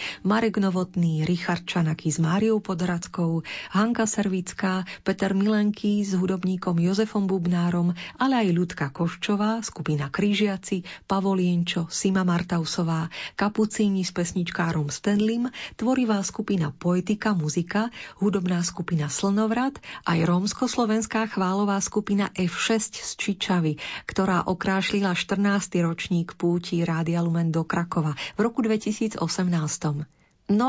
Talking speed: 110 wpm